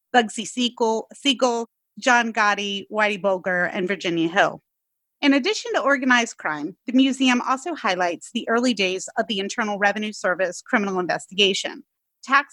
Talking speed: 140 wpm